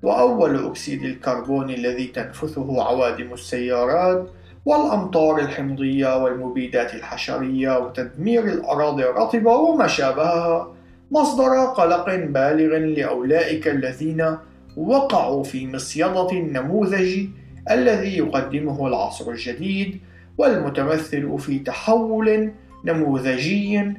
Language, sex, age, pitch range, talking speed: Arabic, male, 50-69, 130-185 Hz, 85 wpm